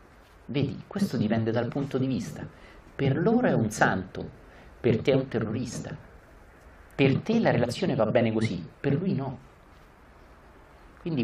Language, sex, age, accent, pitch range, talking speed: Italian, male, 50-69, native, 85-130 Hz, 150 wpm